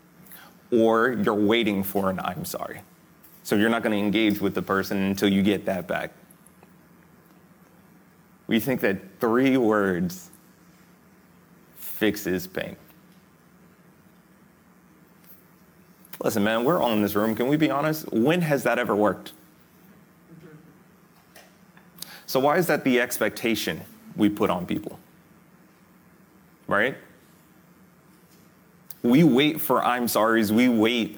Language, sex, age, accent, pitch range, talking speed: English, male, 30-49, American, 105-175 Hz, 120 wpm